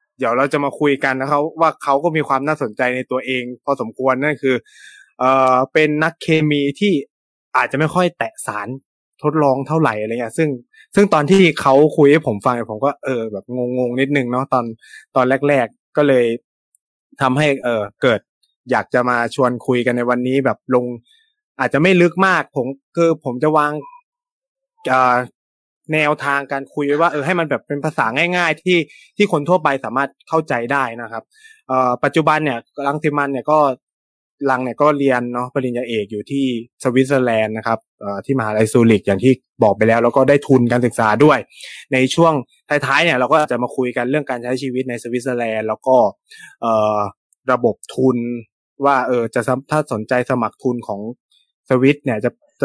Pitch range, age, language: 125-150 Hz, 20-39, Thai